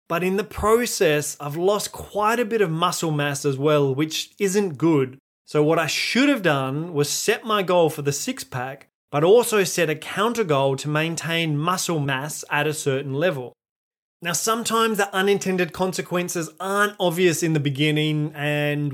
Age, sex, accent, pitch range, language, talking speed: 20-39, male, Australian, 145-195 Hz, English, 175 wpm